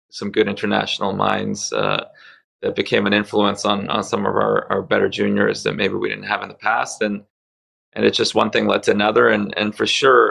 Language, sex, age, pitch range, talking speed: English, male, 20-39, 100-110 Hz, 220 wpm